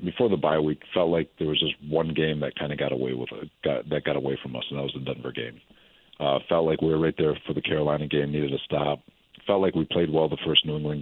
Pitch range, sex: 70-80 Hz, male